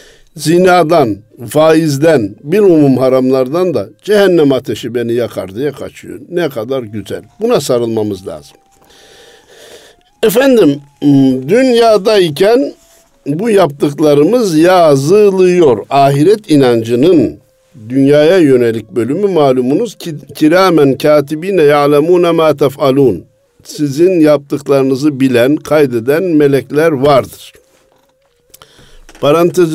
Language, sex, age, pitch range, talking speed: Turkish, male, 60-79, 130-170 Hz, 85 wpm